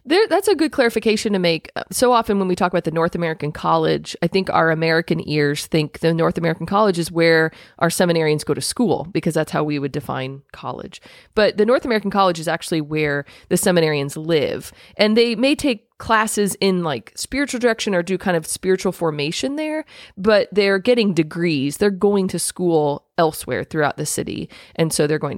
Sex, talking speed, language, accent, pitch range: female, 195 wpm, English, American, 150-190 Hz